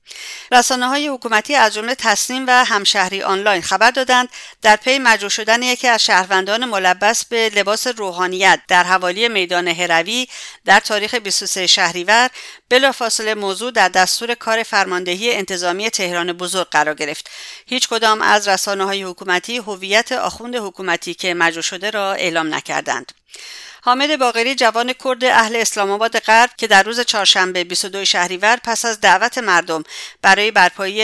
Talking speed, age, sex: 145 wpm, 50-69, female